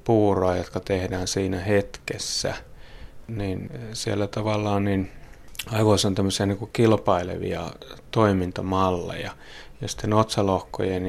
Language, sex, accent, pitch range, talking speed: Finnish, male, native, 95-105 Hz, 95 wpm